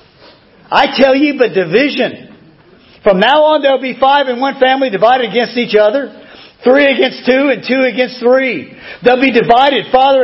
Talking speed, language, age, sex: 175 wpm, English, 50-69, male